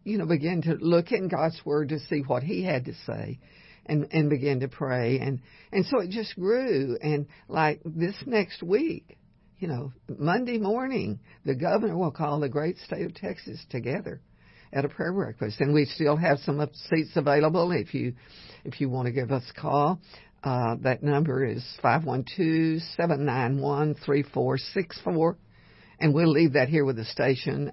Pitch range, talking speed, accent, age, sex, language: 130-165 Hz, 190 wpm, American, 60-79, female, English